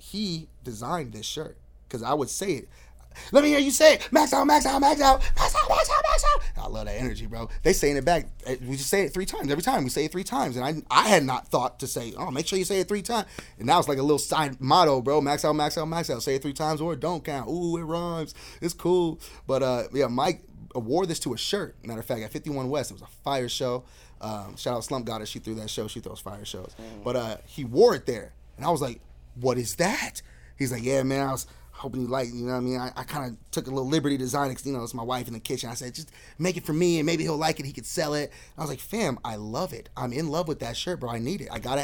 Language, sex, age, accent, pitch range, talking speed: English, male, 30-49, American, 120-165 Hz, 300 wpm